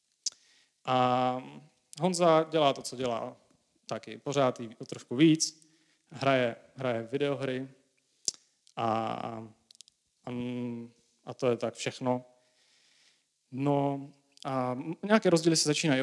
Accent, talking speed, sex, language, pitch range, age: native, 105 wpm, male, Czech, 120-150 Hz, 30-49